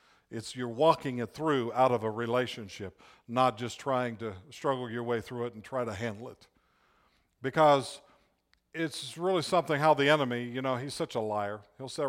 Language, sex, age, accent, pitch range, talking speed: English, male, 50-69, American, 120-160 Hz, 190 wpm